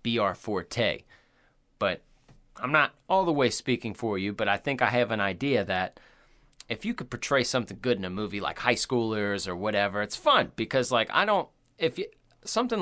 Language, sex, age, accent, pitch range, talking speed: English, male, 30-49, American, 100-135 Hz, 195 wpm